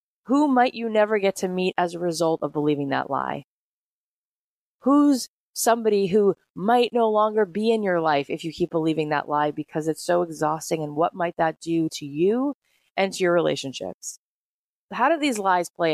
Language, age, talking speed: English, 30-49, 190 wpm